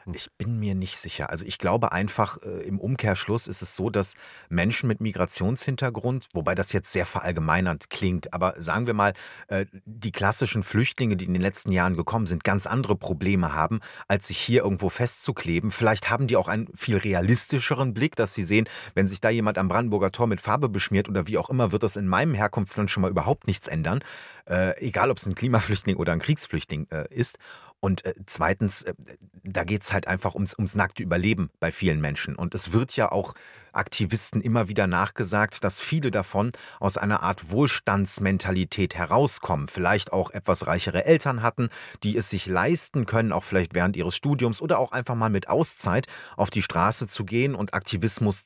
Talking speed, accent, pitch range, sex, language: 185 wpm, German, 95-115 Hz, male, German